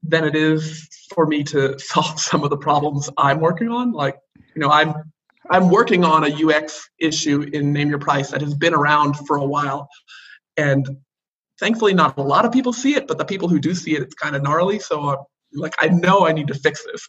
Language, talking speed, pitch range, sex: English, 230 wpm, 140-170 Hz, male